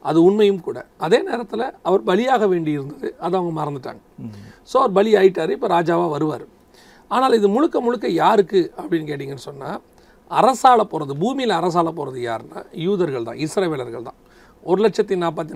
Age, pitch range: 40-59, 155-200 Hz